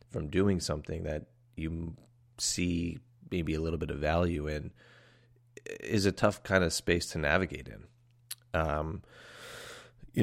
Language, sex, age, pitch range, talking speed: English, male, 30-49, 80-120 Hz, 140 wpm